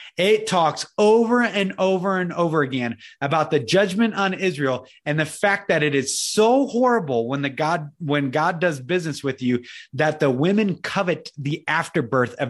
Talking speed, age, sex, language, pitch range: 180 wpm, 30-49, male, English, 130-165 Hz